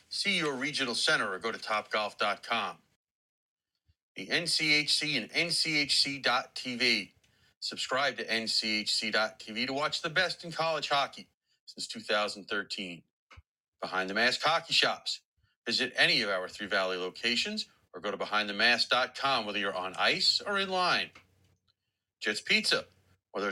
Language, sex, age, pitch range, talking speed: English, male, 40-59, 100-150 Hz, 130 wpm